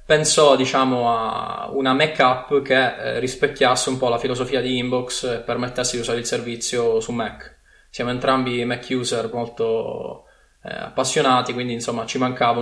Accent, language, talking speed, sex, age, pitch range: native, Italian, 155 wpm, male, 20-39, 120-140 Hz